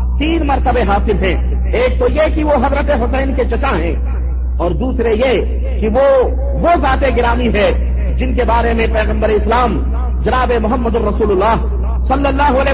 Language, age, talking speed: Urdu, 50-69, 170 wpm